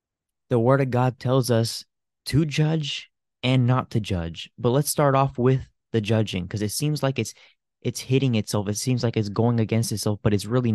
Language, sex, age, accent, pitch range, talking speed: English, male, 20-39, American, 110-135 Hz, 205 wpm